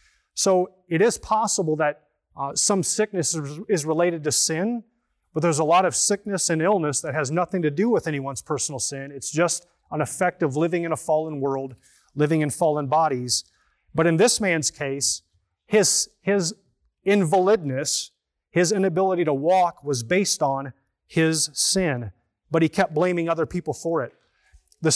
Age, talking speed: 30-49, 165 wpm